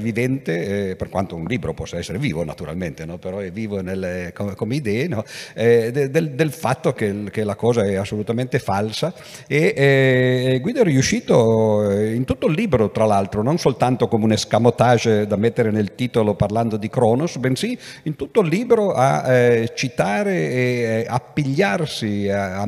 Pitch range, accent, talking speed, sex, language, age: 105-150 Hz, native, 170 wpm, male, Italian, 50-69